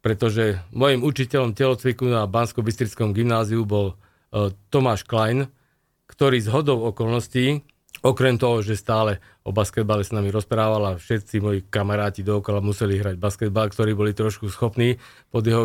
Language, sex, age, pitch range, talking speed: Slovak, male, 40-59, 110-130 Hz, 140 wpm